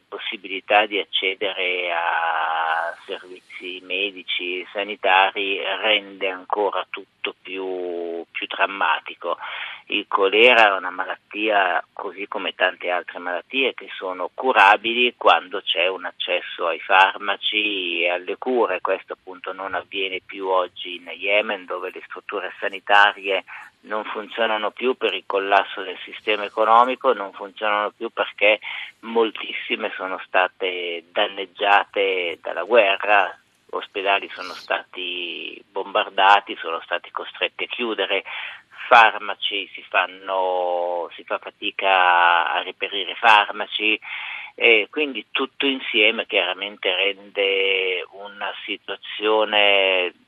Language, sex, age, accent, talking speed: Italian, male, 50-69, native, 110 wpm